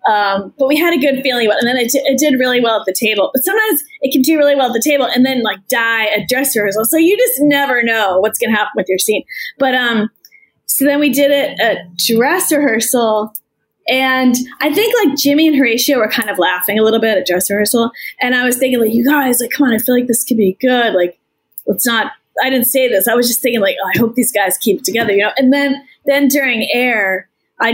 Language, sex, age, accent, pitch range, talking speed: English, female, 20-39, American, 210-275 Hz, 260 wpm